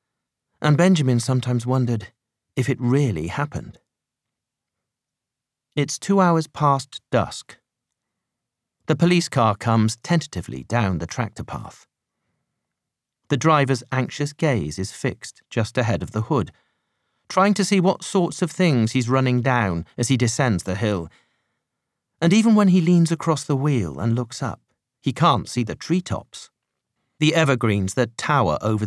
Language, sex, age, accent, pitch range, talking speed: English, male, 40-59, British, 110-150 Hz, 145 wpm